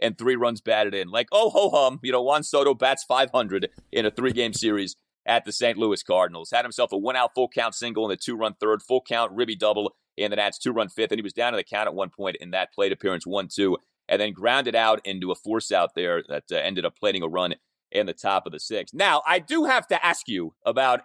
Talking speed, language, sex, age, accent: 245 wpm, English, male, 30-49, American